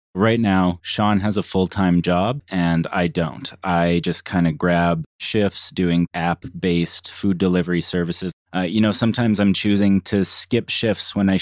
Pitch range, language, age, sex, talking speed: 85-100 Hz, English, 20-39, male, 180 wpm